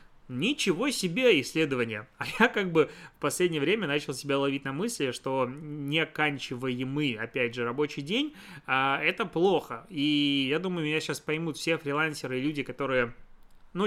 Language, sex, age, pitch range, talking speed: Russian, male, 20-39, 130-175 Hz, 160 wpm